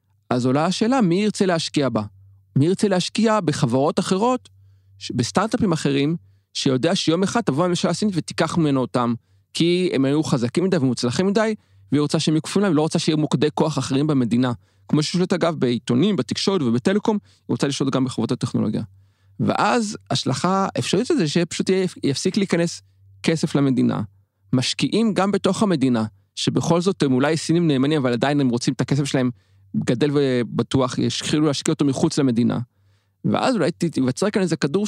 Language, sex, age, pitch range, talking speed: Hebrew, male, 30-49, 120-175 Hz, 130 wpm